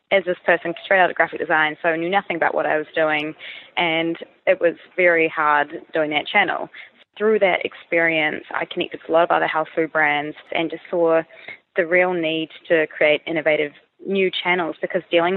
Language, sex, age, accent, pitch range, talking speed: English, female, 20-39, Australian, 160-185 Hz, 205 wpm